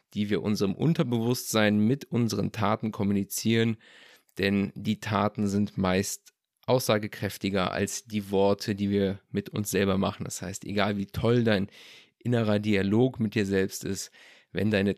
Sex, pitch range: male, 100-110 Hz